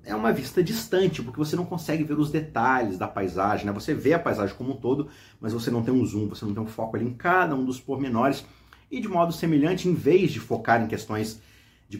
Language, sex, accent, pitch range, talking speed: Portuguese, male, Brazilian, 105-155 Hz, 245 wpm